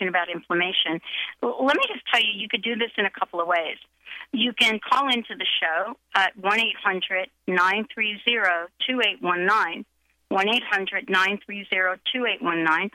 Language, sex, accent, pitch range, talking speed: English, female, American, 185-245 Hz, 125 wpm